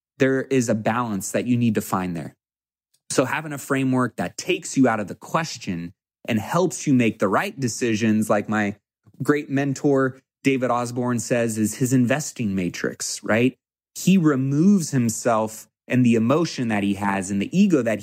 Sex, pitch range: male, 110-145 Hz